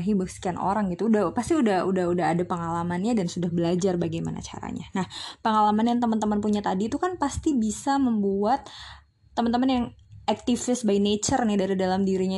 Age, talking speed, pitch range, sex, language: 20-39, 175 wpm, 185-240 Hz, female, Indonesian